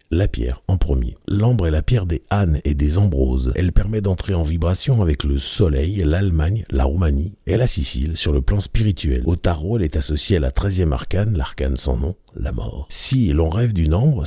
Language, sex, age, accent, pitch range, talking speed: French, male, 60-79, French, 70-100 Hz, 210 wpm